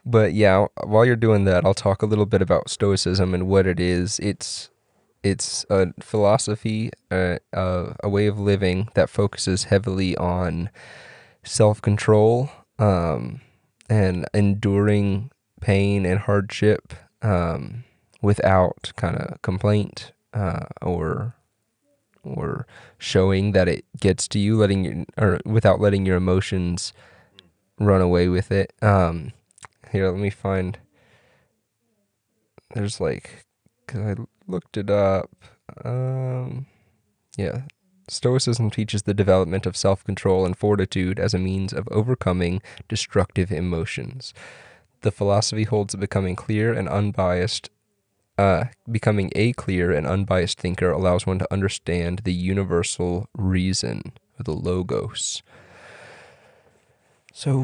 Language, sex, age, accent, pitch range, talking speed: English, male, 20-39, American, 95-110 Hz, 120 wpm